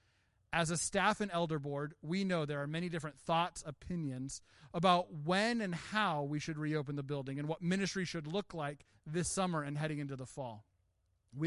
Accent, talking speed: American, 195 wpm